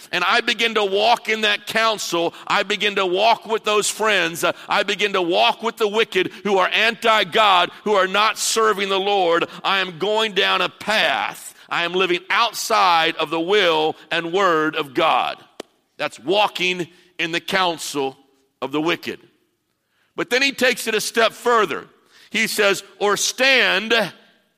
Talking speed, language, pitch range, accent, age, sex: 165 wpm, English, 180-220 Hz, American, 50-69, male